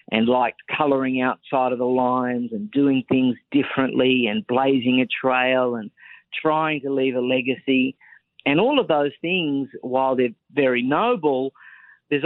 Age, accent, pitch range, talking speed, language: 50-69, Australian, 125-145 Hz, 150 wpm, English